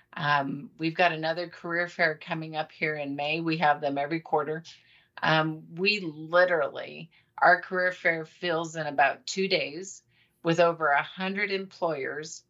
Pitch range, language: 155-180 Hz, English